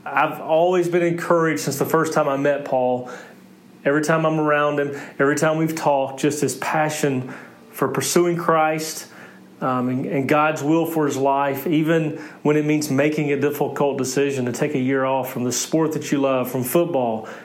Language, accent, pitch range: English, American, 135-155 Hz